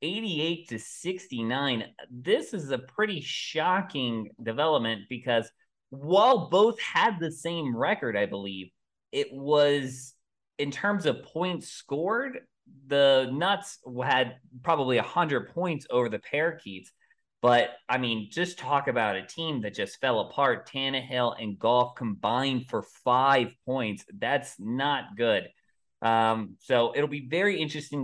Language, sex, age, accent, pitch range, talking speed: English, male, 20-39, American, 110-140 Hz, 135 wpm